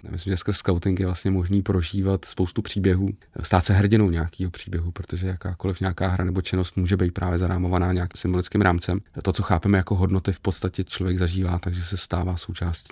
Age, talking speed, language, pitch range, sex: 30-49, 190 wpm, Czech, 90-100 Hz, male